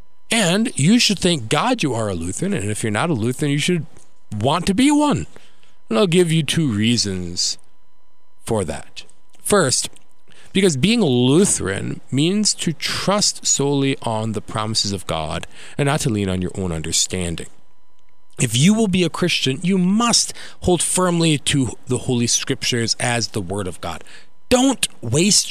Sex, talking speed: male, 170 wpm